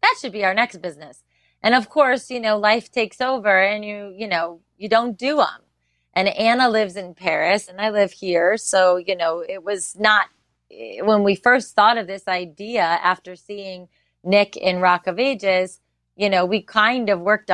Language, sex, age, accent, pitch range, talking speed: English, female, 30-49, American, 175-220 Hz, 195 wpm